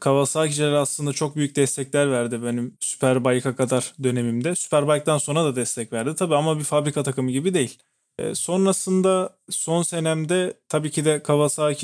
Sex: male